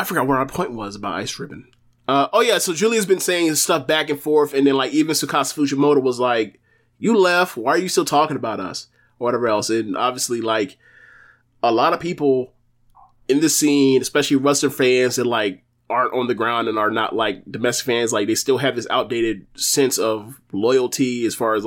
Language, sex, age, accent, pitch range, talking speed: English, male, 20-39, American, 115-145 Hz, 215 wpm